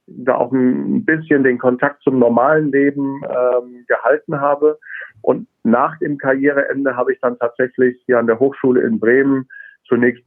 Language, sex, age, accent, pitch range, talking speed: German, male, 50-69, German, 125-145 Hz, 160 wpm